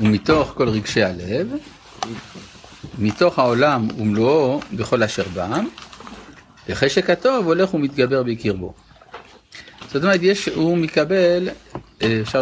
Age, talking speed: 60-79, 100 wpm